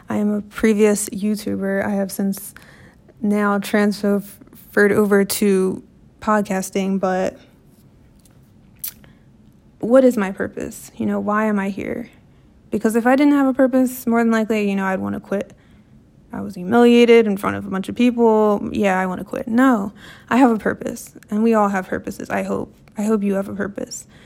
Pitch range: 195-230 Hz